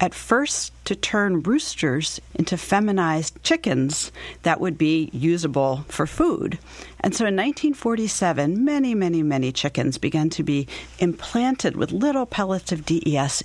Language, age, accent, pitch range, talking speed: English, 40-59, American, 150-210 Hz, 140 wpm